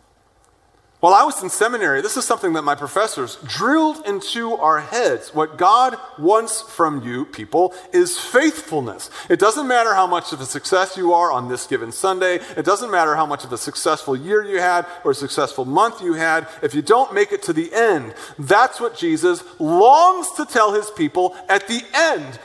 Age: 40-59